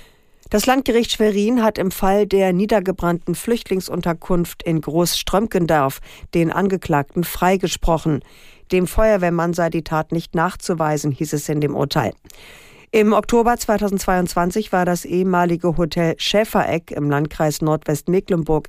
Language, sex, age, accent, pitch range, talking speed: German, female, 50-69, German, 160-200 Hz, 120 wpm